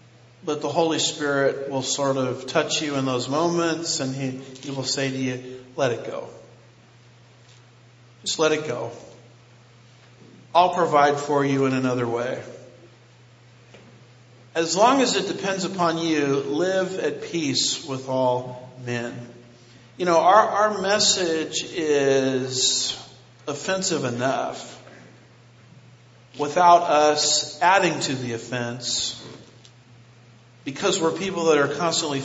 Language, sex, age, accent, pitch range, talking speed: English, male, 50-69, American, 125-155 Hz, 125 wpm